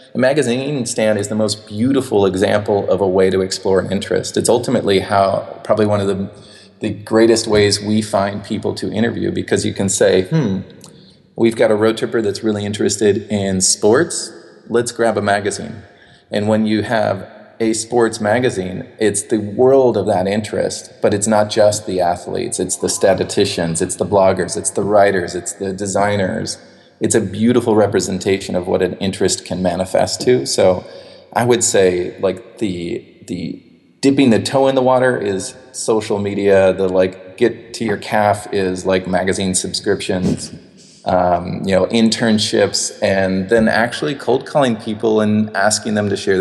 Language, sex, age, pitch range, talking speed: English, male, 30-49, 95-110 Hz, 170 wpm